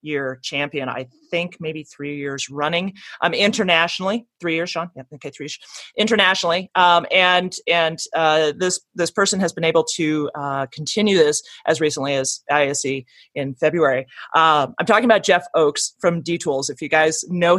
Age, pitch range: 30-49, 145-185 Hz